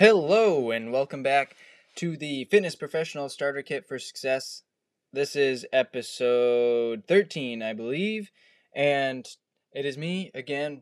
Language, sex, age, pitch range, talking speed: English, male, 20-39, 125-155 Hz, 130 wpm